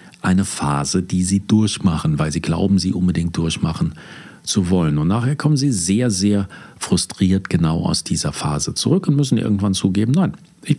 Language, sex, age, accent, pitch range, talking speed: German, male, 50-69, German, 90-125 Hz, 170 wpm